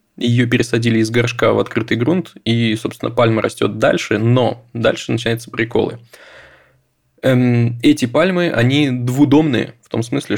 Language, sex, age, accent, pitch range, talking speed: Russian, male, 20-39, native, 115-130 Hz, 140 wpm